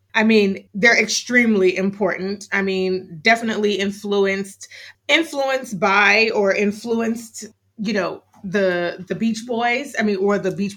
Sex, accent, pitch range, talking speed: female, American, 185-230 Hz, 135 wpm